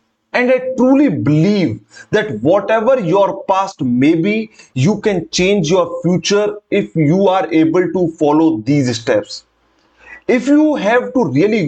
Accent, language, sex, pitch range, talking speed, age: Indian, English, male, 160-225 Hz, 145 wpm, 30-49